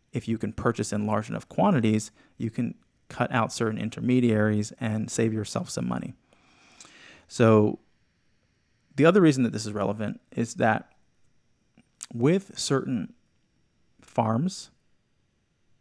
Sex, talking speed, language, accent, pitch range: male, 120 wpm, English, American, 110-120 Hz